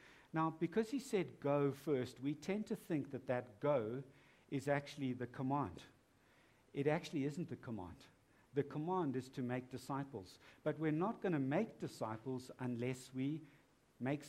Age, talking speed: 60-79, 160 wpm